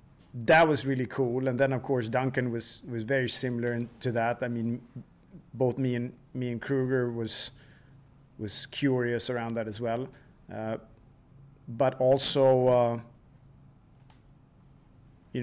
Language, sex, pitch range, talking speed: Swedish, male, 115-135 Hz, 140 wpm